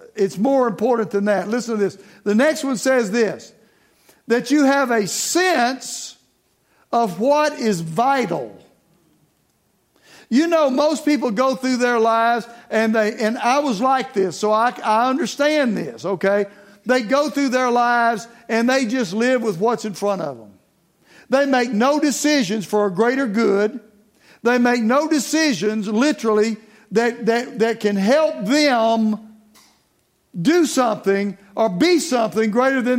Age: 60-79